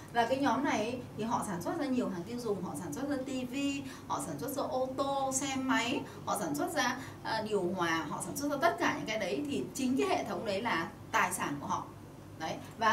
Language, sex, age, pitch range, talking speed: Vietnamese, female, 20-39, 190-280 Hz, 250 wpm